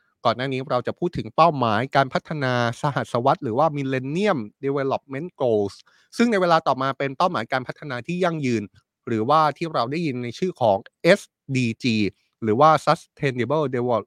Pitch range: 115-150 Hz